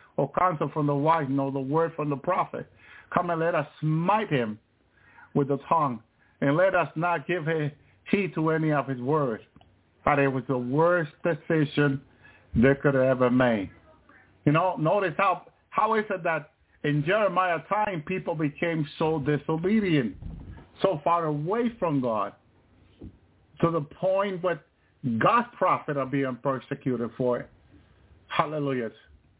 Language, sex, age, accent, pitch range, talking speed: English, male, 50-69, American, 135-170 Hz, 150 wpm